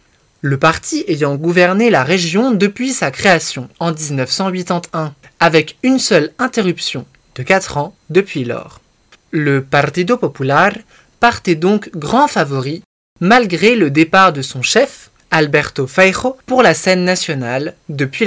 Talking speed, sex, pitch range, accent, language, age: 130 wpm, male, 150-205 Hz, French, French, 20-39